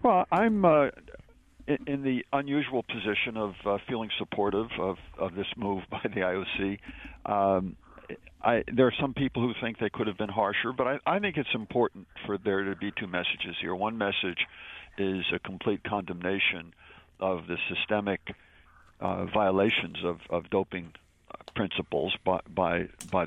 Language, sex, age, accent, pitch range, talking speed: English, male, 60-79, American, 95-120 Hz, 155 wpm